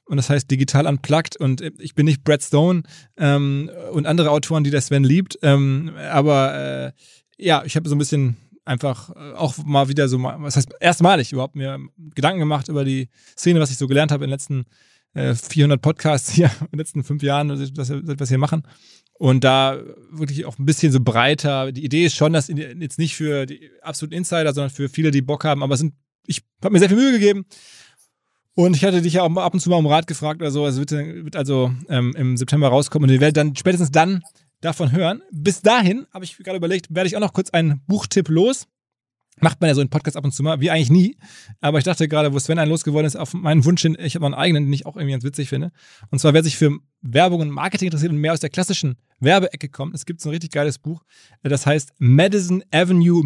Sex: male